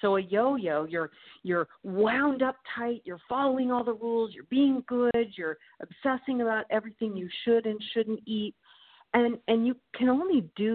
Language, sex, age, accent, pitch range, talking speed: English, female, 50-69, American, 170-225 Hz, 175 wpm